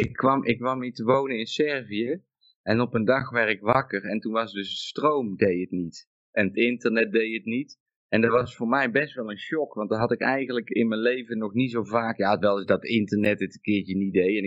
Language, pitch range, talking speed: Dutch, 105-130 Hz, 260 wpm